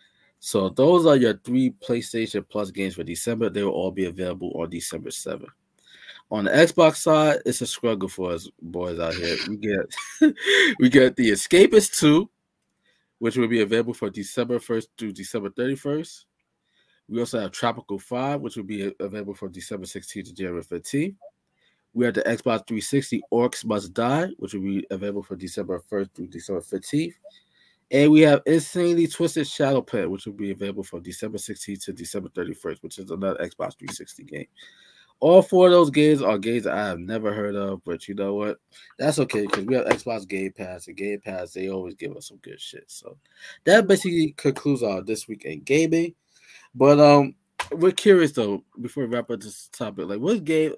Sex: male